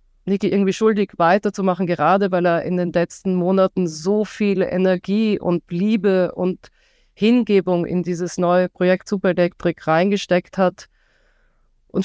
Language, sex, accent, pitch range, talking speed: German, female, German, 175-195 Hz, 135 wpm